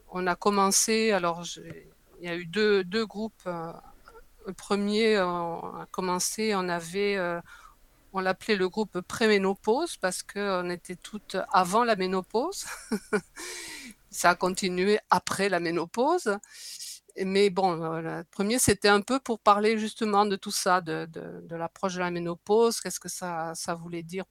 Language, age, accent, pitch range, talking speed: French, 50-69, French, 175-210 Hz, 155 wpm